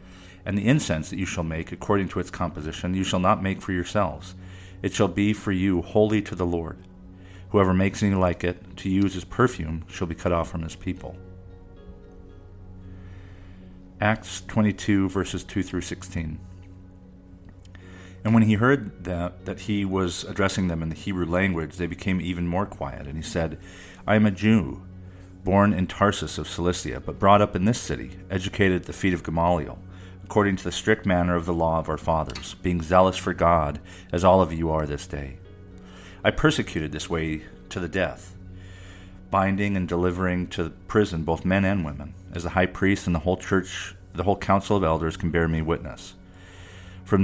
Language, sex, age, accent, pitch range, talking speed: English, male, 40-59, American, 85-95 Hz, 185 wpm